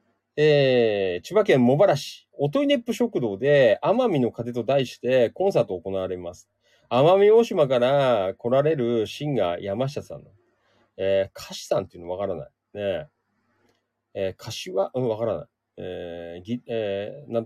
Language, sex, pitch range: Japanese, male, 115-155 Hz